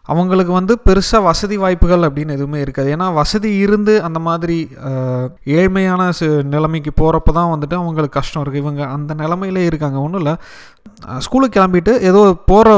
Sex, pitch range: male, 140-180 Hz